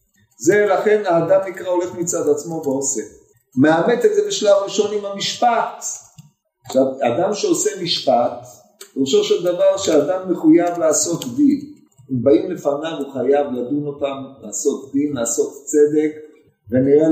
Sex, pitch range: male, 150-225 Hz